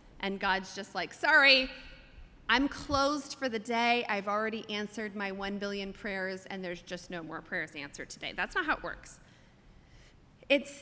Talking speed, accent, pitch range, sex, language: 170 wpm, American, 200-260 Hz, female, English